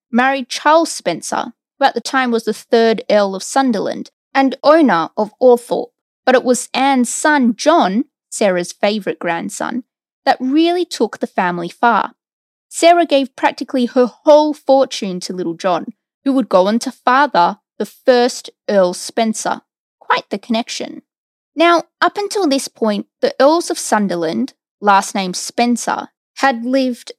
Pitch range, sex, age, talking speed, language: 205-285 Hz, female, 20-39, 150 wpm, English